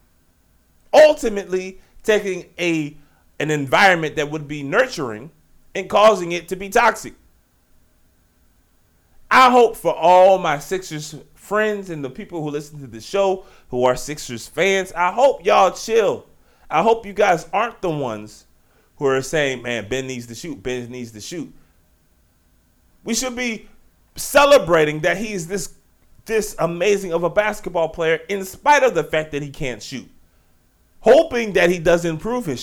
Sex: male